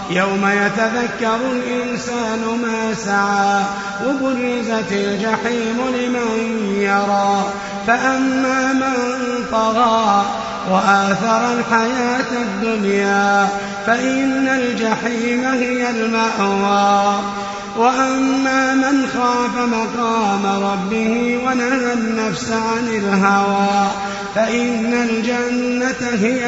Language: Arabic